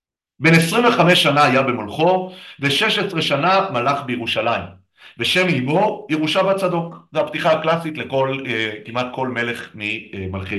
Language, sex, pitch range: Hebrew, male, 115-175 Hz